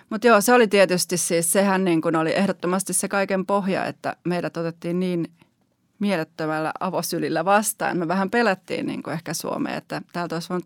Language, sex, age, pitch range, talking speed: Finnish, female, 30-49, 160-195 Hz, 180 wpm